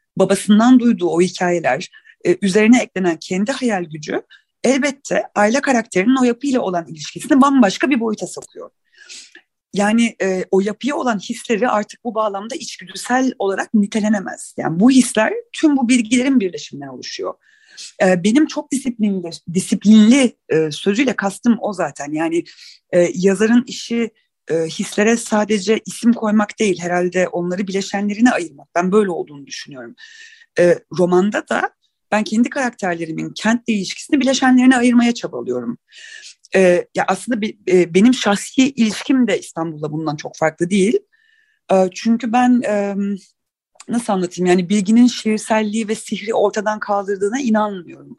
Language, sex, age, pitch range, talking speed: Turkish, female, 40-59, 190-250 Hz, 125 wpm